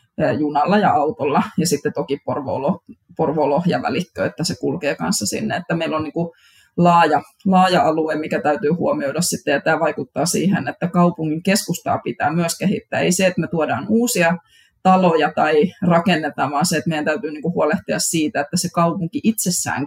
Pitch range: 155-190 Hz